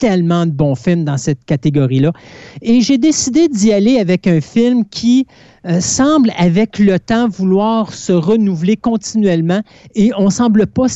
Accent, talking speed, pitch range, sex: Canadian, 165 wpm, 155-205 Hz, male